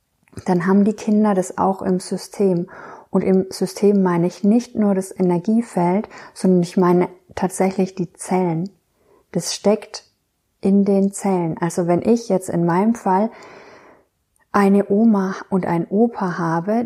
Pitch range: 180-210 Hz